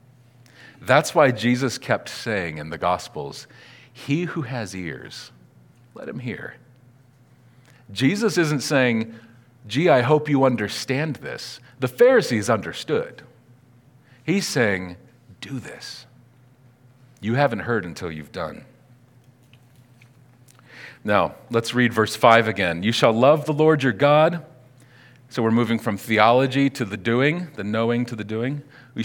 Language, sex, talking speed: English, male, 130 wpm